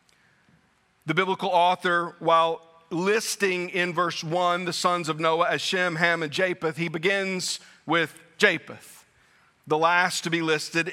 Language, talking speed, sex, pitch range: English, 145 wpm, male, 155-175 Hz